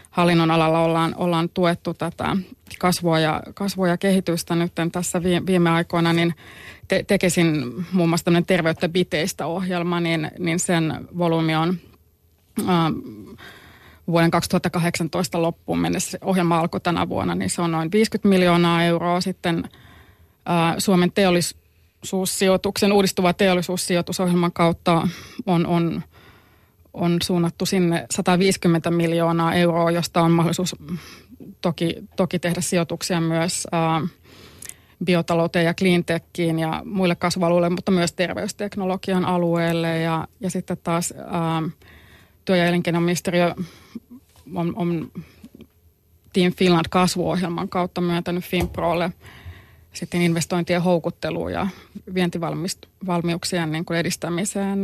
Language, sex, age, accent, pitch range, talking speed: Finnish, female, 20-39, native, 165-180 Hz, 110 wpm